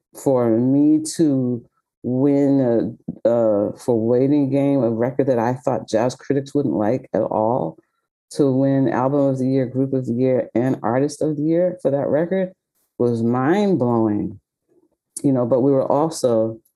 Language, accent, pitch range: English, American, 120-150 Hz